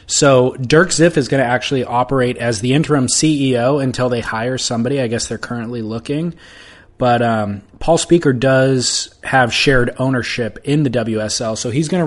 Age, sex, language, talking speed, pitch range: 20-39, male, English, 180 wpm, 110-140 Hz